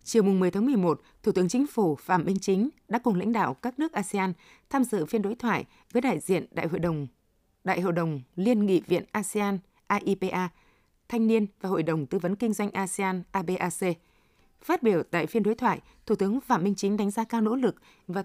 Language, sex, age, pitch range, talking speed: Vietnamese, female, 20-39, 175-230 Hz, 215 wpm